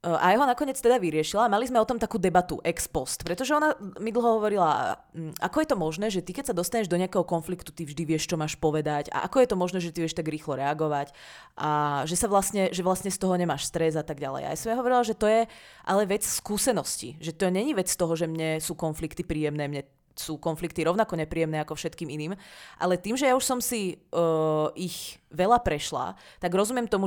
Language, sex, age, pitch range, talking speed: Czech, female, 20-39, 160-220 Hz, 235 wpm